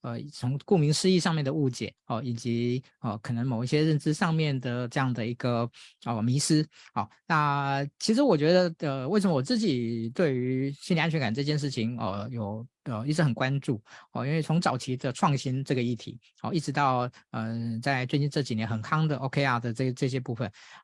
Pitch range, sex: 120-155 Hz, male